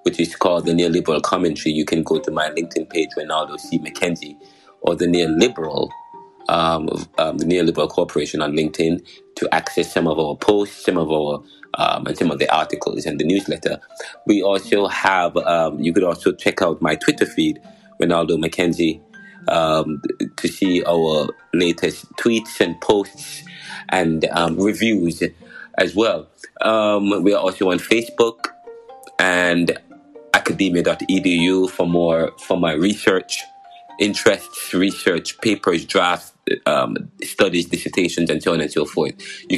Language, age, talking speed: English, 30-49, 150 wpm